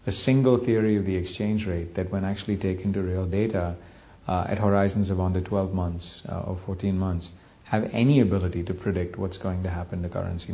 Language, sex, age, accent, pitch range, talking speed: English, male, 40-59, Indian, 90-115 Hz, 205 wpm